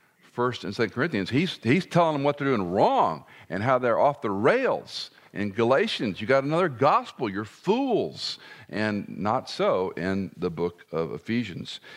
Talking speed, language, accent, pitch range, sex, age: 170 wpm, English, American, 110-155 Hz, male, 50-69